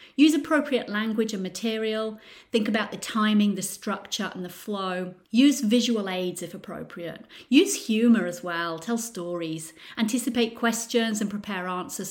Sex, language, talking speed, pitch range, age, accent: female, English, 150 wpm, 180-235 Hz, 30-49, British